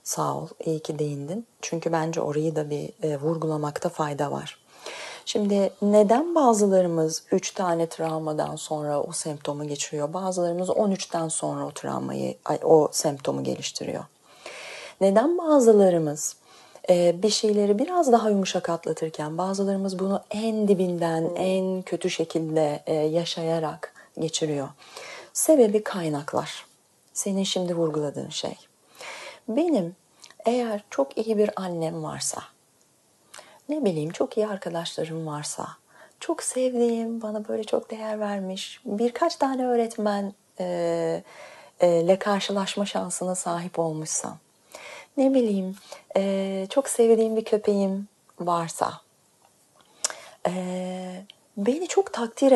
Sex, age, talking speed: female, 30-49, 110 wpm